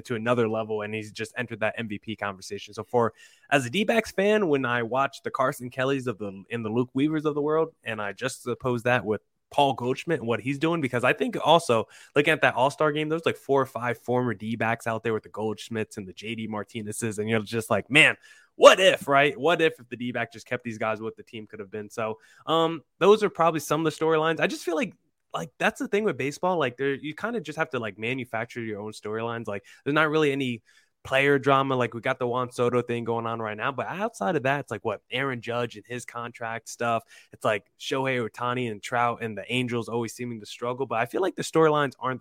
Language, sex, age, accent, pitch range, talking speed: English, male, 20-39, American, 115-140 Hz, 250 wpm